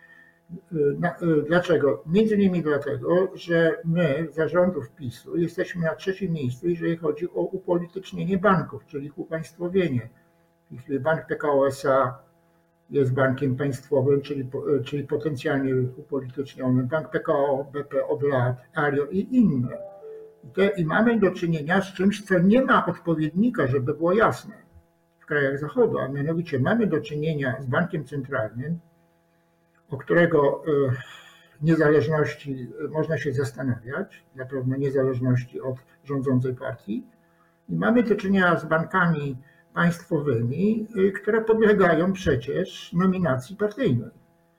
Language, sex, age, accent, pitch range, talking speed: Polish, male, 60-79, native, 140-180 Hz, 115 wpm